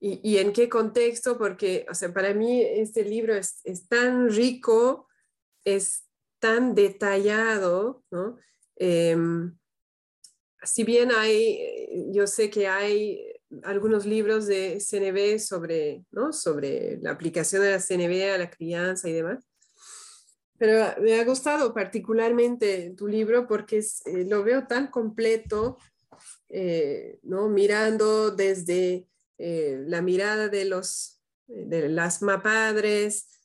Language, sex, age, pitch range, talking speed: Spanish, female, 30-49, 195-225 Hz, 125 wpm